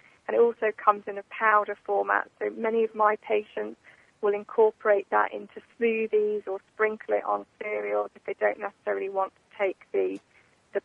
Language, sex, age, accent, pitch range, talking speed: English, female, 40-59, British, 205-235 Hz, 170 wpm